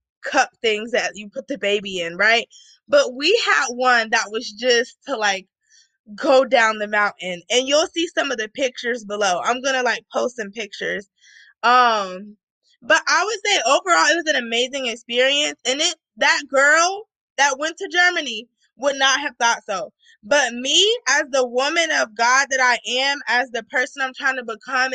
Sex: female